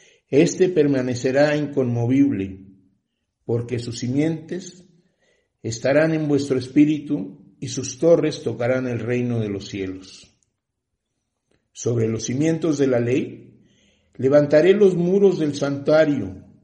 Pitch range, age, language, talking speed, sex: 125-160 Hz, 60-79, Spanish, 110 wpm, male